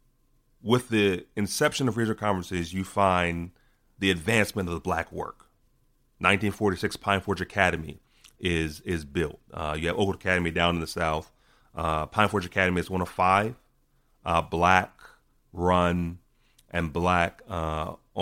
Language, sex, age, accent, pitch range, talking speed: English, male, 30-49, American, 85-105 Hz, 150 wpm